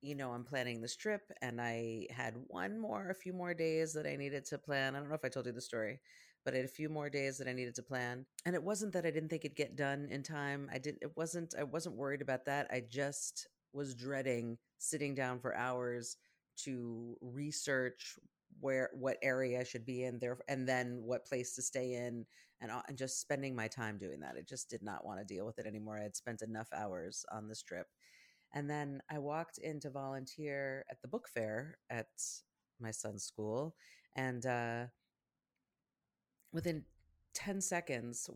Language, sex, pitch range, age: English, female, 120-145 Hz, 30-49